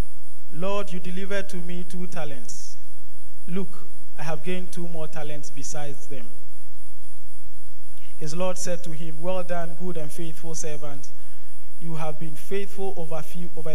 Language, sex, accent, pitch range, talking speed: English, male, Nigerian, 150-185 Hz, 145 wpm